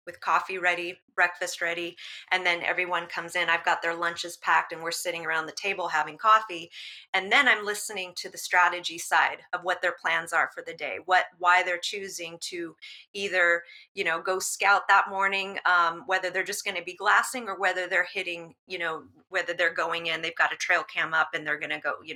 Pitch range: 175-210 Hz